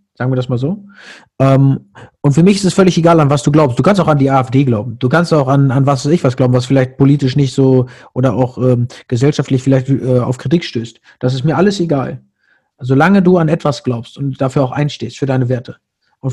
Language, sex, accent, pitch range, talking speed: German, male, German, 135-170 Hz, 245 wpm